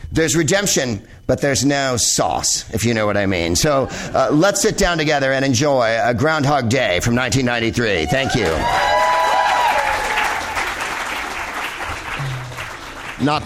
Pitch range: 120-170 Hz